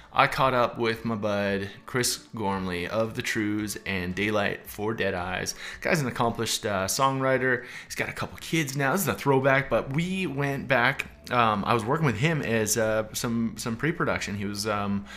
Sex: male